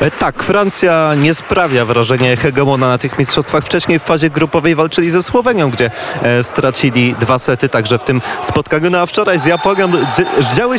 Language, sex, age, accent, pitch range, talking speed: Polish, male, 30-49, native, 140-185 Hz, 165 wpm